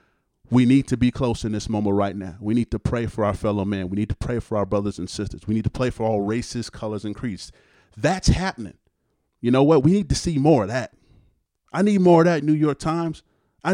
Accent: American